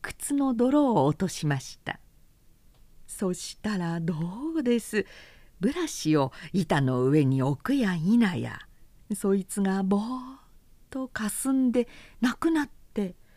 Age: 50-69